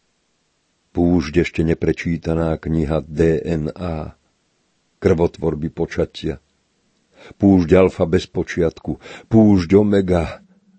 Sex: male